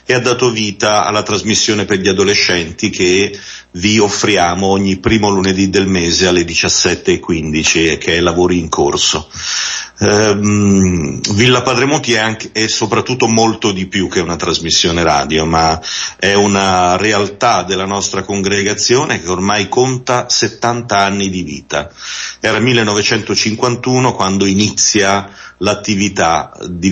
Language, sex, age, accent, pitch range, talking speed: Italian, male, 40-59, native, 90-110 Hz, 135 wpm